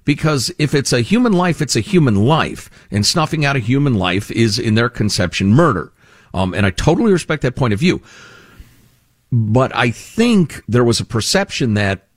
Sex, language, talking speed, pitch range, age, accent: male, English, 185 wpm, 100-140 Hz, 50-69, American